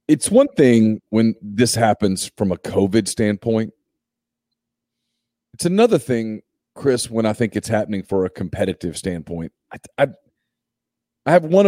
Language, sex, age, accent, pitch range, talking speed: English, male, 40-59, American, 110-130 Hz, 140 wpm